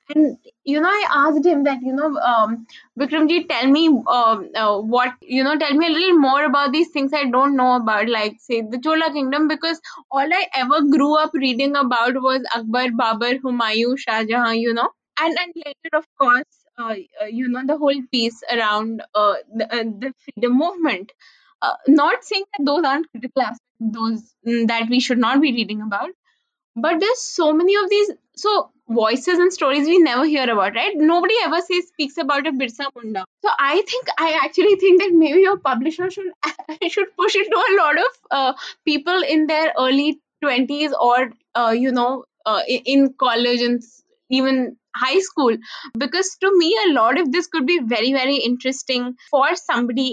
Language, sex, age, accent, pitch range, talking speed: English, female, 10-29, Indian, 245-330 Hz, 190 wpm